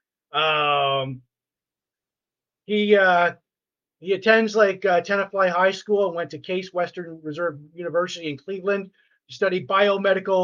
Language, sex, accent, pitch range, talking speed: English, male, American, 160-195 Hz, 120 wpm